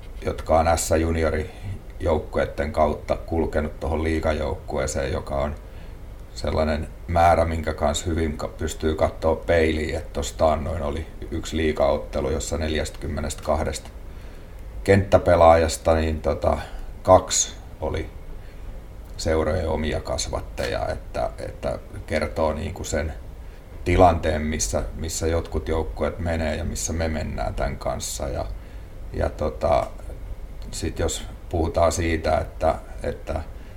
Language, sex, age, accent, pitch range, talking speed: Finnish, male, 30-49, native, 75-90 Hz, 105 wpm